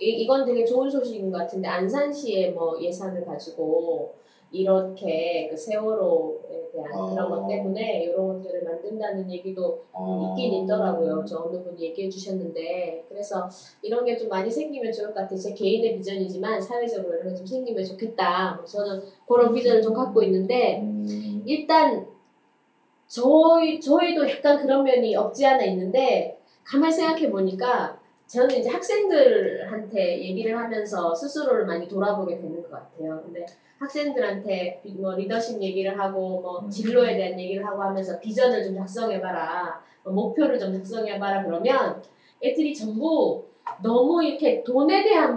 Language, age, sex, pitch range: Korean, 20-39, female, 185-265 Hz